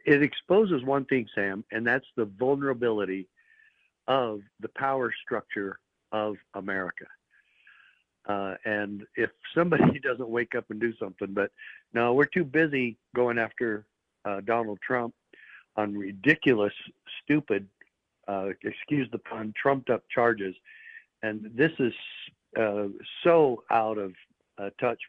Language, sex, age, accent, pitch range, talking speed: English, male, 60-79, American, 105-130 Hz, 130 wpm